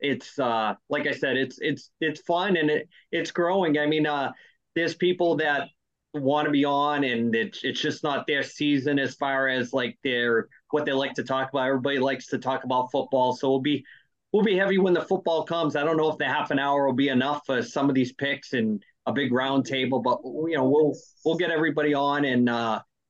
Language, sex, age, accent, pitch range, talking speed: English, male, 30-49, American, 135-160 Hz, 230 wpm